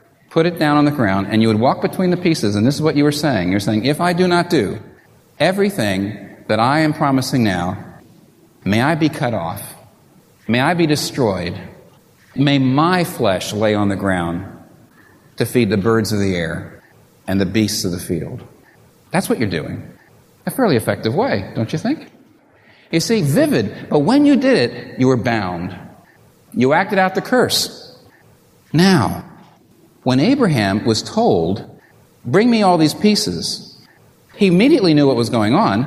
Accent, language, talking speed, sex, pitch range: American, English, 175 wpm, male, 105-170 Hz